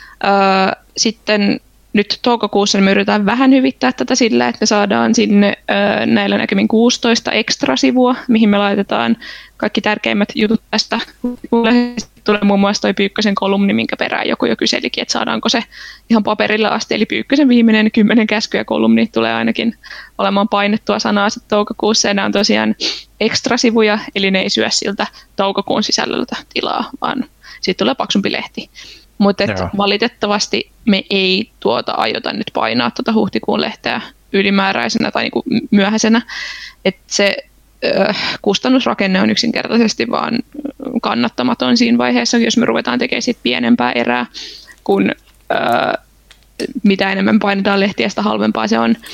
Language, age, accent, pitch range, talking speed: Finnish, 20-39, native, 195-235 Hz, 135 wpm